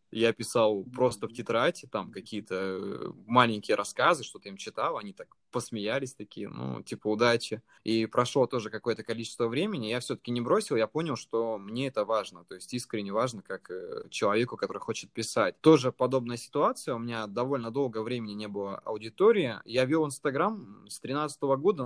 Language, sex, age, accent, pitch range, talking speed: Russian, male, 20-39, native, 110-140 Hz, 170 wpm